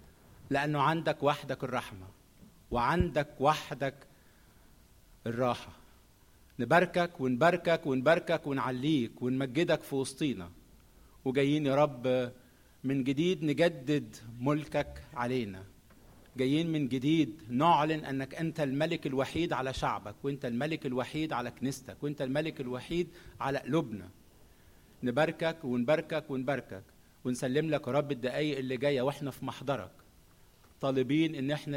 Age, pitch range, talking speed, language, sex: 50-69, 125-150 Hz, 110 wpm, Arabic, male